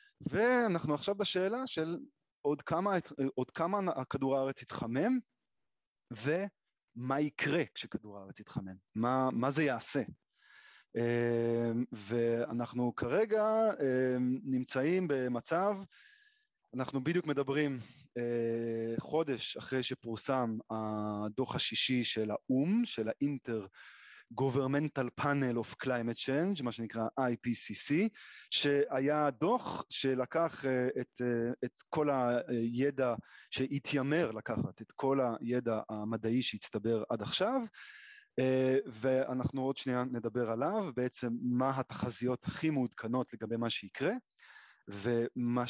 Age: 30-49